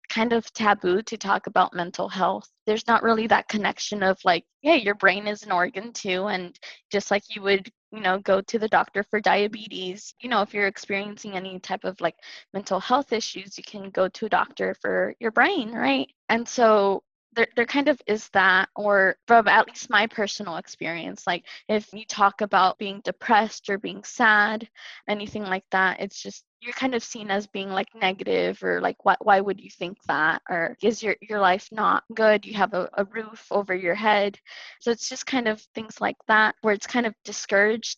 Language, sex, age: English, female, 20-39